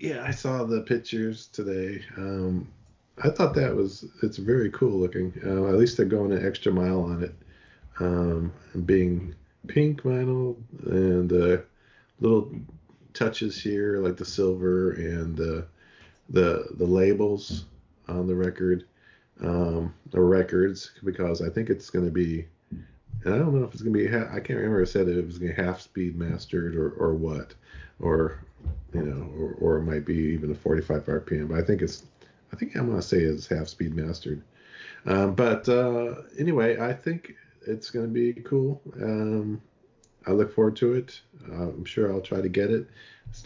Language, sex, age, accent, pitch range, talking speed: English, male, 40-59, American, 85-110 Hz, 185 wpm